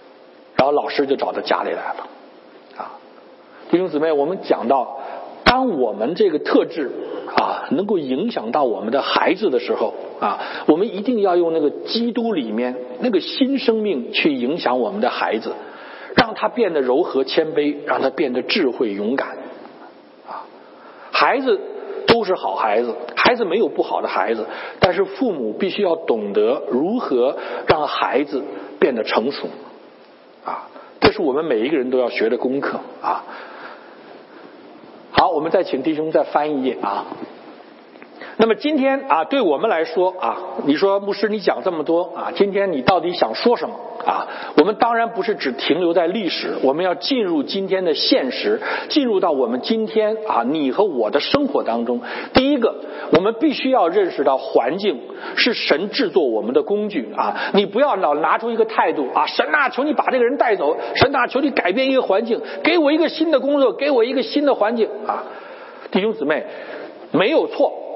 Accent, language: Chinese, English